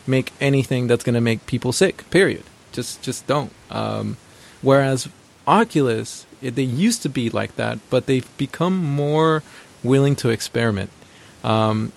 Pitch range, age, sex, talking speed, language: 115-135 Hz, 20-39, male, 145 wpm, English